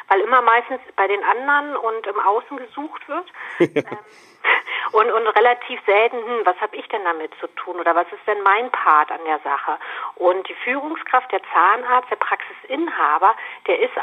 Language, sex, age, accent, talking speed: German, female, 50-69, German, 175 wpm